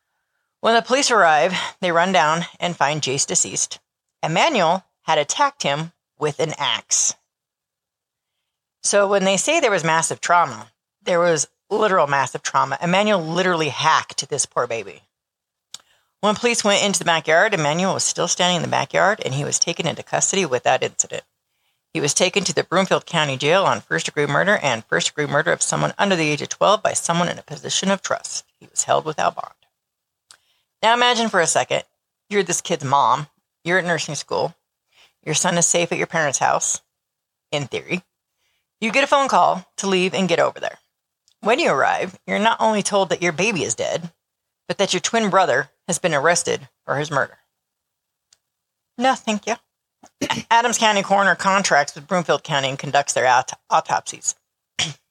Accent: American